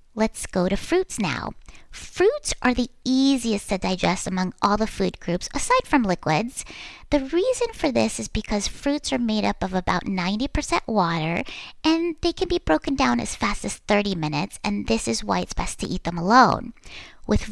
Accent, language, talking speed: American, English, 190 wpm